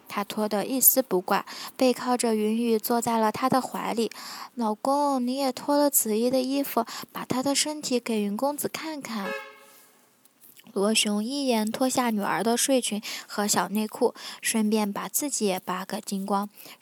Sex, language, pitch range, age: female, Chinese, 205-270 Hz, 10-29